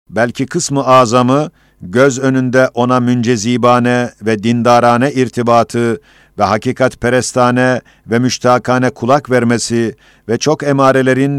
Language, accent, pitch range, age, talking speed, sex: Turkish, native, 120-130 Hz, 50-69, 110 wpm, male